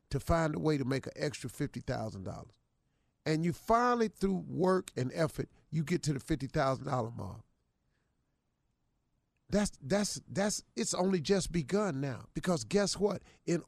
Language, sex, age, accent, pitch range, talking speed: English, male, 50-69, American, 155-230 Hz, 165 wpm